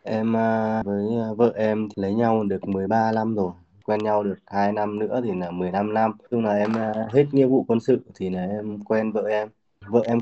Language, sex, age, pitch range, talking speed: Vietnamese, male, 20-39, 100-120 Hz, 210 wpm